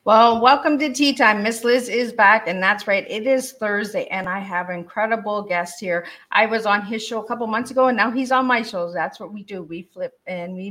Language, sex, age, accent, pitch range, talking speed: English, female, 50-69, American, 180-240 Hz, 250 wpm